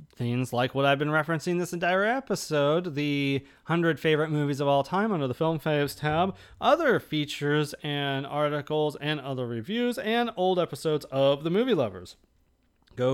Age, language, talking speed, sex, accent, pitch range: 30-49, English, 165 wpm, male, American, 140-185 Hz